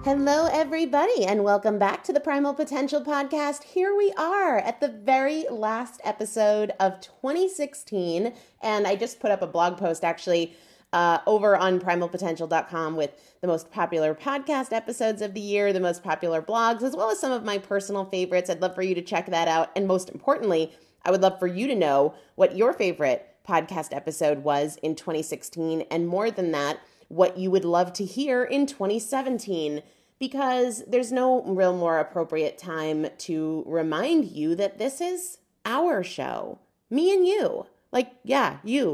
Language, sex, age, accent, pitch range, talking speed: English, female, 30-49, American, 175-260 Hz, 175 wpm